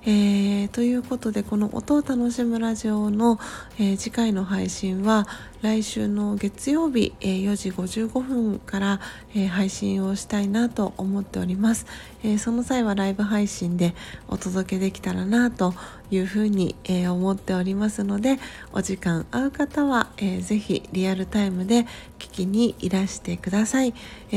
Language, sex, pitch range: Japanese, female, 190-230 Hz